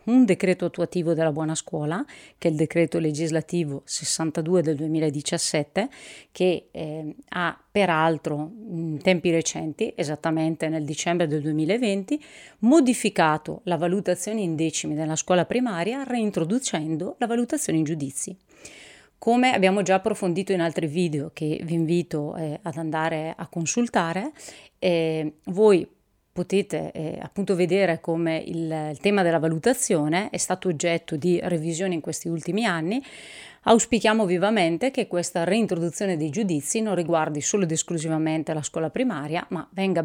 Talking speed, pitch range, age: 140 wpm, 160-195 Hz, 30-49